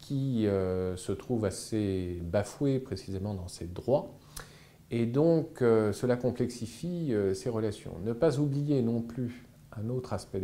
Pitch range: 100-145 Hz